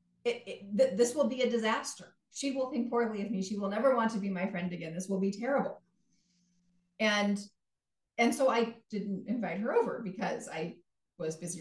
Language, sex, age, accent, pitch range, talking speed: English, female, 30-49, American, 190-245 Hz, 200 wpm